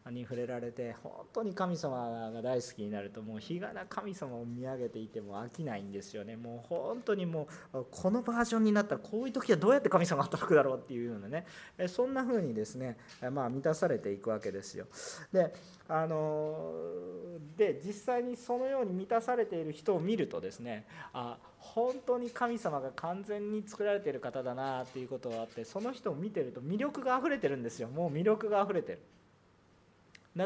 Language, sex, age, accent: Japanese, male, 40-59, native